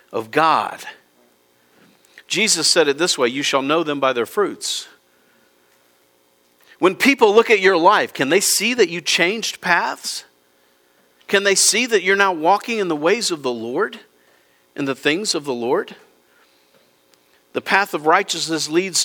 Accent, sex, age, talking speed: American, male, 50-69, 160 wpm